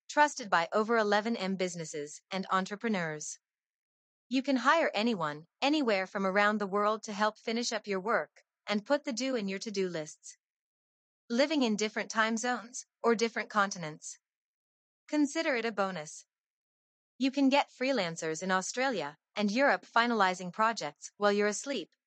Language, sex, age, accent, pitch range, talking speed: English, female, 30-49, American, 185-240 Hz, 150 wpm